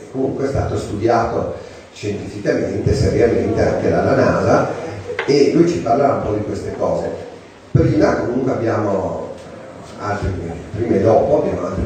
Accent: native